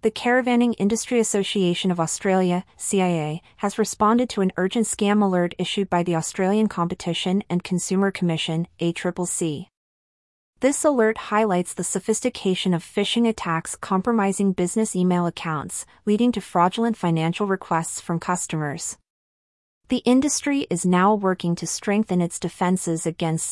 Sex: female